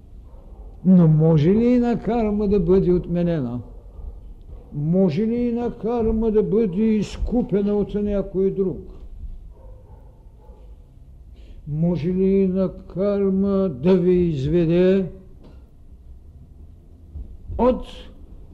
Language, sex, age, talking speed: Bulgarian, male, 60-79, 85 wpm